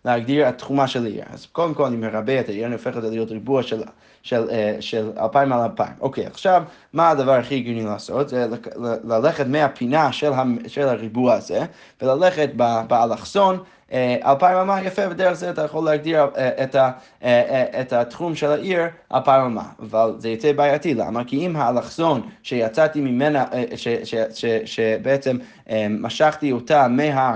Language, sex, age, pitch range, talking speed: Hebrew, male, 20-39, 120-160 Hz, 155 wpm